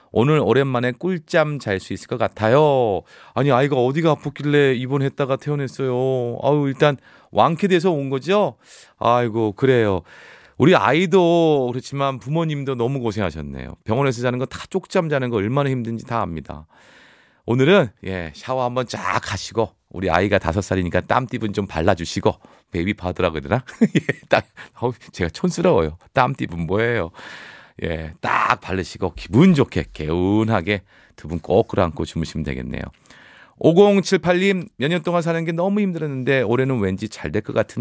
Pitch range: 100-165 Hz